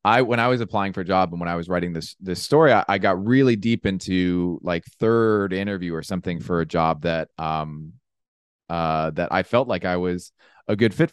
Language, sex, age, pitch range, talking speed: English, male, 30-49, 85-100 Hz, 225 wpm